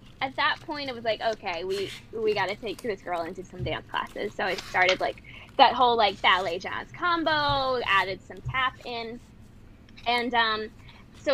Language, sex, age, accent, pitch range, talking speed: English, female, 10-29, American, 200-250 Hz, 185 wpm